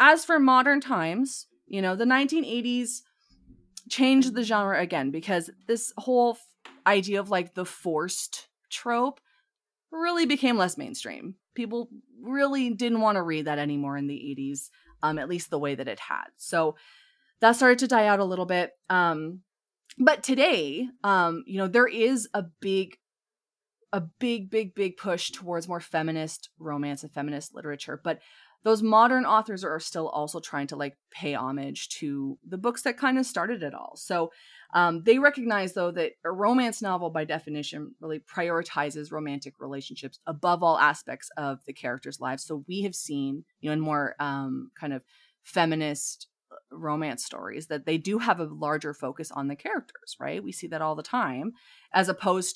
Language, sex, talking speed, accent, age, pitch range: English, female, 170 wpm, American, 20-39, 150-235 Hz